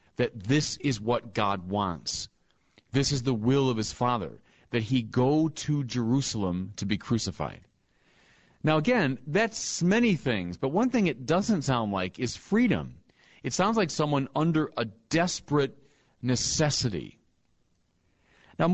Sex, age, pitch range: male, 40-59, 105-145 Hz